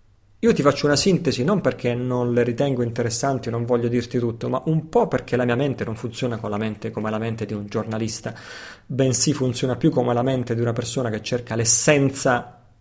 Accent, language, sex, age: native, Italian, male, 30-49